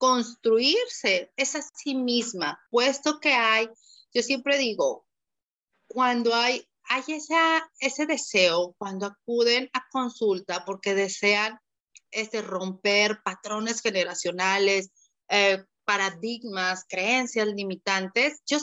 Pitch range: 210-275 Hz